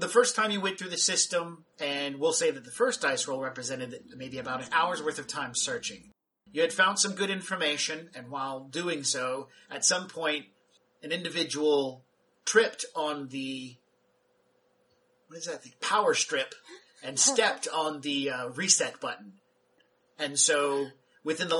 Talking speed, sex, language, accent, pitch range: 160 wpm, male, English, American, 140-190 Hz